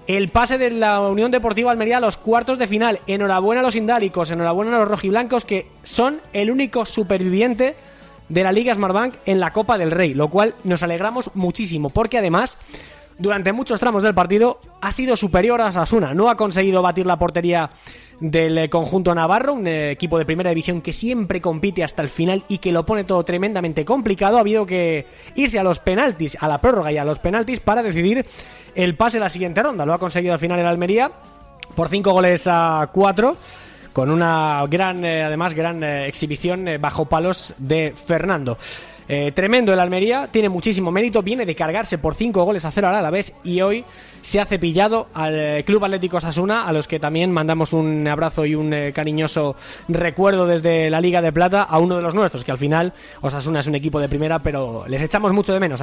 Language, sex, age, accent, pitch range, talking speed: Spanish, male, 20-39, Spanish, 165-215 Hz, 205 wpm